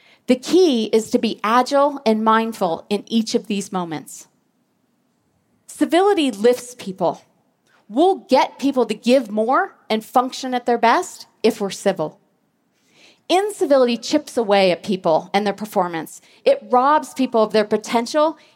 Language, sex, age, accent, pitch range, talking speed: English, female, 40-59, American, 205-275 Hz, 140 wpm